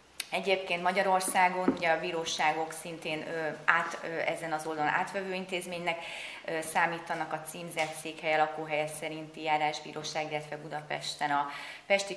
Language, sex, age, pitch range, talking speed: Hungarian, female, 30-49, 155-185 Hz, 105 wpm